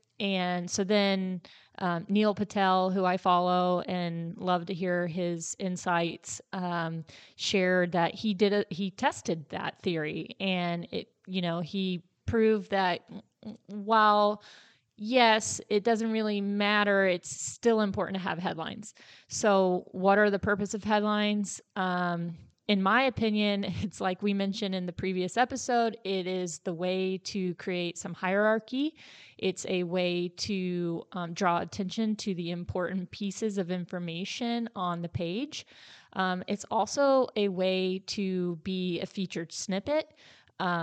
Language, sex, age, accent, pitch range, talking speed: English, female, 20-39, American, 175-205 Hz, 145 wpm